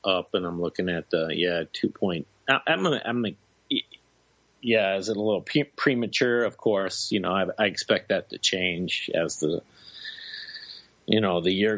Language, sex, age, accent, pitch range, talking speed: English, male, 30-49, American, 90-105 Hz, 180 wpm